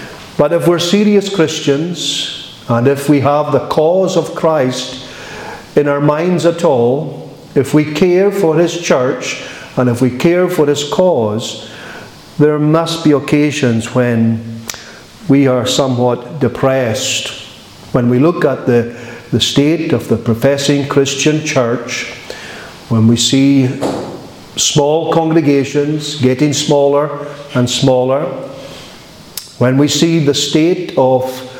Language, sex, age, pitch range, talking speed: English, male, 50-69, 125-155 Hz, 125 wpm